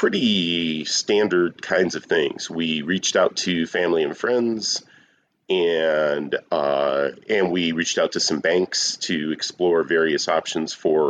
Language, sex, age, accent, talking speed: English, male, 40-59, American, 140 wpm